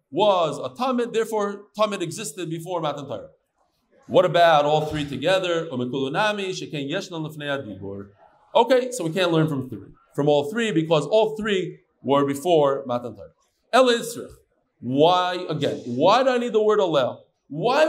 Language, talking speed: English, 135 wpm